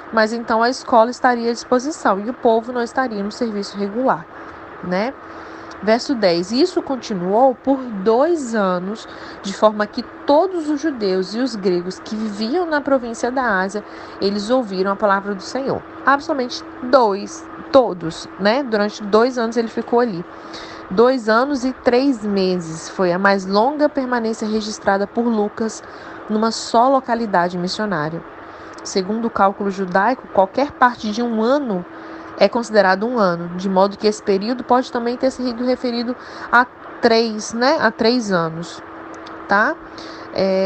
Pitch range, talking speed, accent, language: 195-250 Hz, 150 wpm, Brazilian, Portuguese